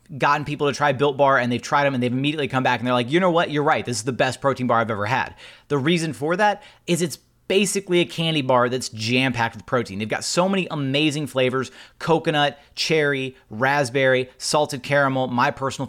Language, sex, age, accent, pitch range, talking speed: English, male, 30-49, American, 125-155 Hz, 225 wpm